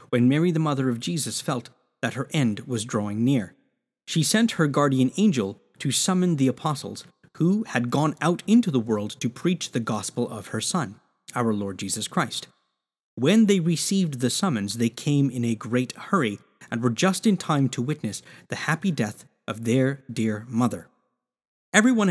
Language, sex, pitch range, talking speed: English, male, 115-155 Hz, 180 wpm